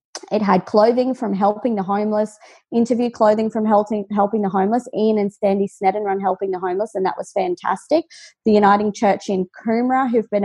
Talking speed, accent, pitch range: 190 wpm, Australian, 190-230 Hz